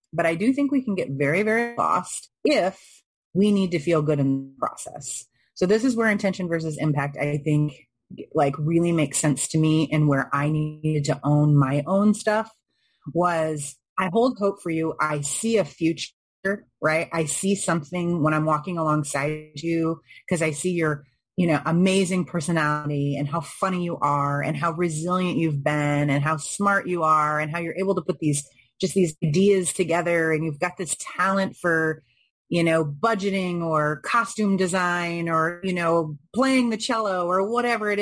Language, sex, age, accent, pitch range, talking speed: English, female, 30-49, American, 155-195 Hz, 185 wpm